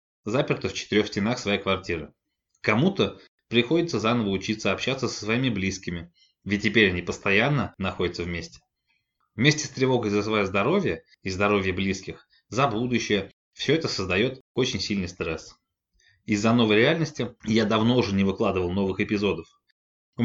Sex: male